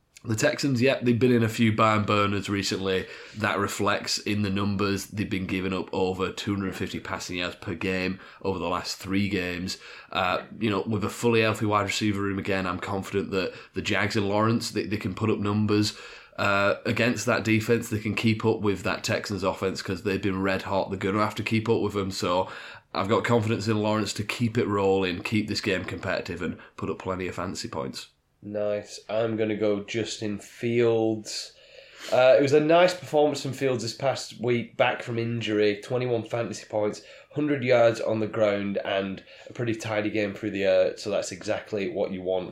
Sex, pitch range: male, 100-115 Hz